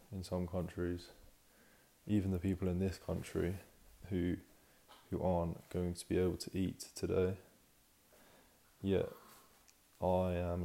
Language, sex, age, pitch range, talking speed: English, male, 20-39, 90-95 Hz, 130 wpm